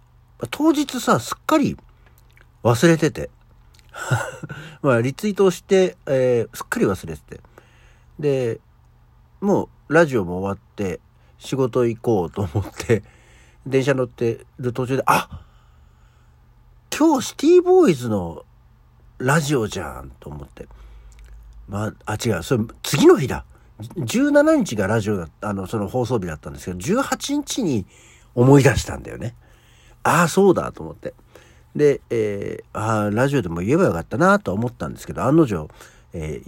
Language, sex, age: Japanese, male, 60-79